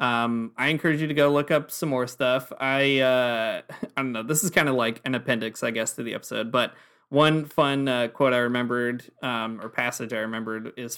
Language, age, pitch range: English, 20-39, 120-135 Hz